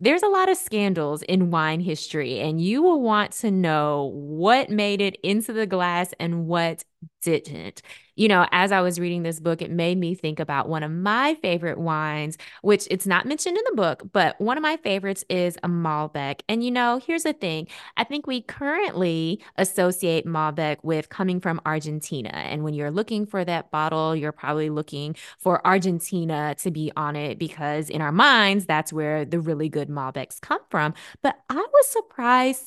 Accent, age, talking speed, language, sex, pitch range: American, 20-39, 190 wpm, English, female, 160-205 Hz